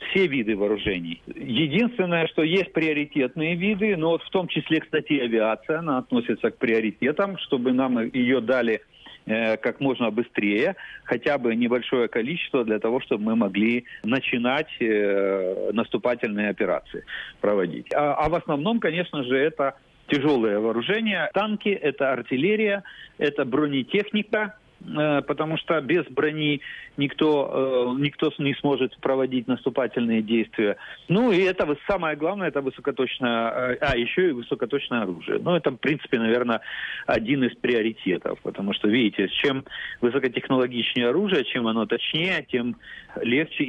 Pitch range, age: 120-160 Hz, 40-59